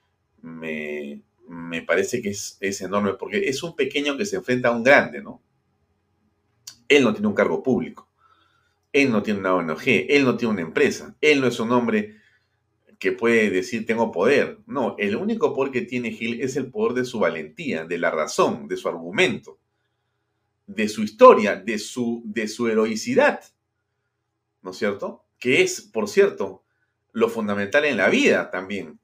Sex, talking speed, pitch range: male, 170 wpm, 100-135 Hz